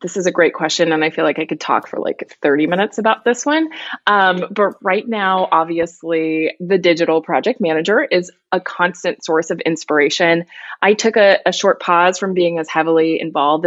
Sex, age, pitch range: female, 20-39, 160-205 Hz